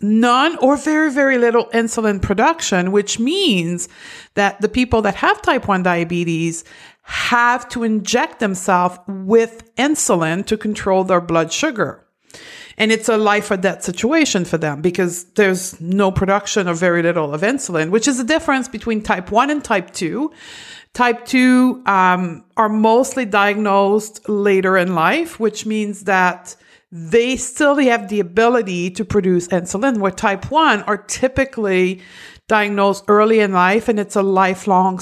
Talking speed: 155 wpm